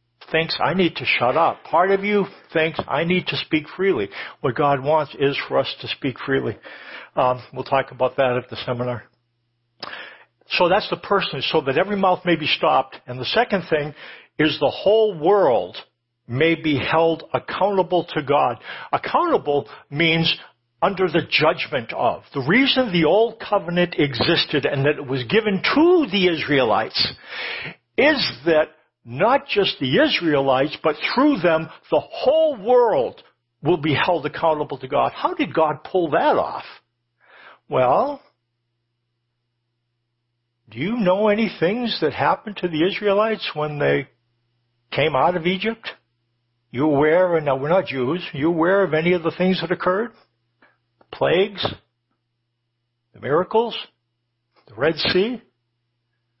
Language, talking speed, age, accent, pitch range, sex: English, 150 wpm, 60-79, American, 120-185 Hz, male